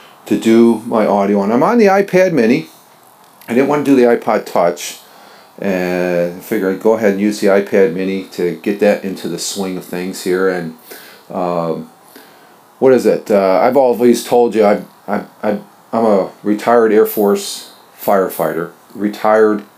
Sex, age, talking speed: male, 40-59, 170 wpm